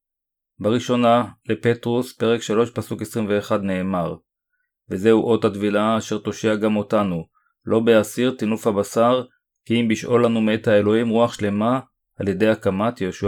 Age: 30-49